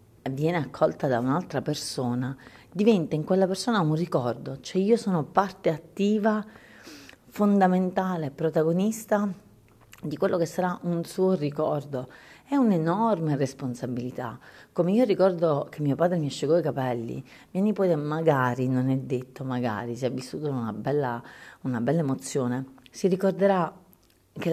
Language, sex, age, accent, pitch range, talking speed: Italian, female, 40-59, native, 135-185 Hz, 135 wpm